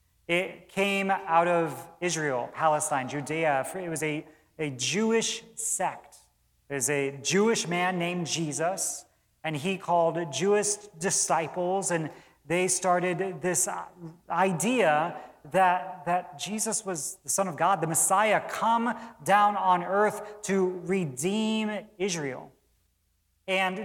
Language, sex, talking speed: English, male, 120 wpm